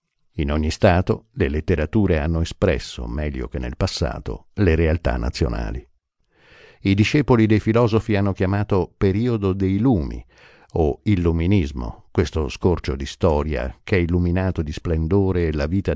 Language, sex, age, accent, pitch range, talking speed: Italian, male, 50-69, native, 75-100 Hz, 135 wpm